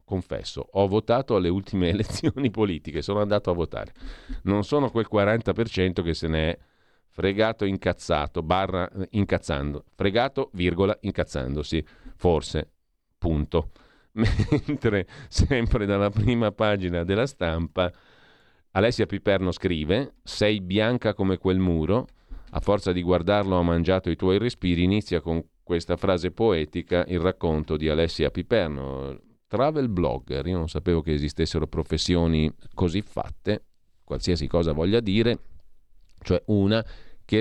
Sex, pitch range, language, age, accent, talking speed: male, 80-100 Hz, Italian, 40-59, native, 125 wpm